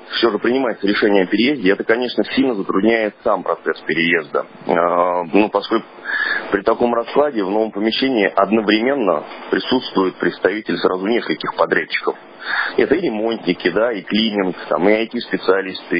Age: 30-49